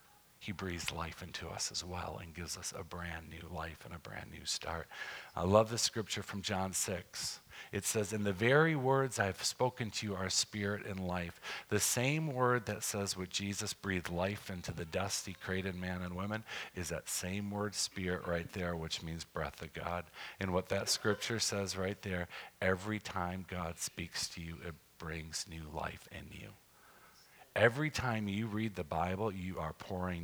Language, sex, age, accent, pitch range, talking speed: English, male, 40-59, American, 85-105 Hz, 195 wpm